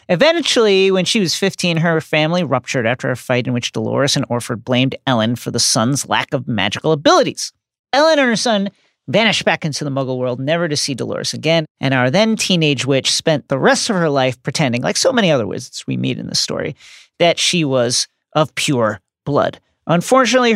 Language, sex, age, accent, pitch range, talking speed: English, male, 40-59, American, 135-180 Hz, 200 wpm